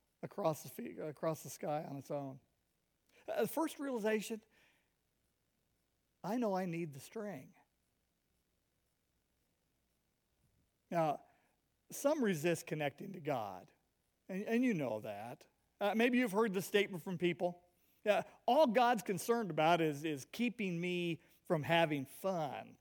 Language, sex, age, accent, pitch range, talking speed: English, male, 50-69, American, 175-245 Hz, 130 wpm